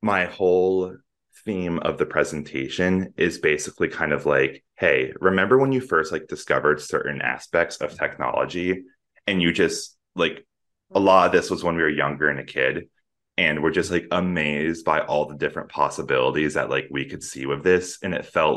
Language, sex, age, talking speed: English, male, 20-39, 185 wpm